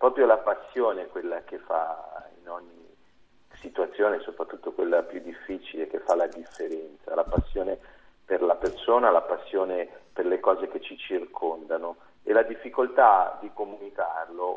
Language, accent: Italian, native